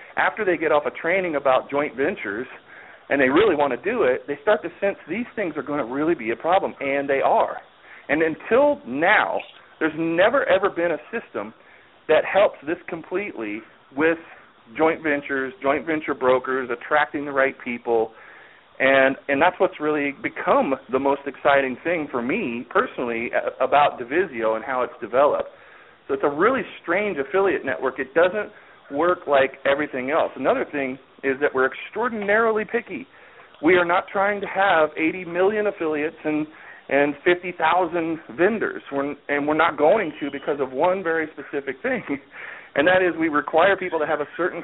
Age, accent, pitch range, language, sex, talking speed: 40-59, American, 140-175 Hz, English, male, 175 wpm